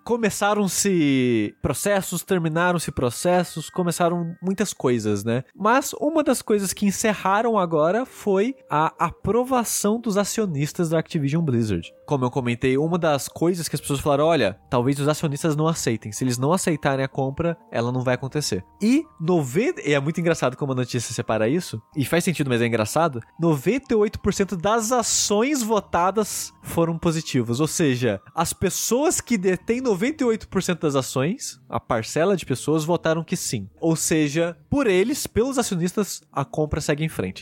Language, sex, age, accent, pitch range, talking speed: Portuguese, male, 20-39, Brazilian, 125-185 Hz, 155 wpm